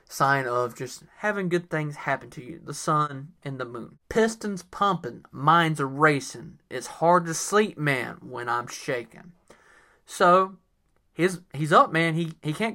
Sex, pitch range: male, 155-200 Hz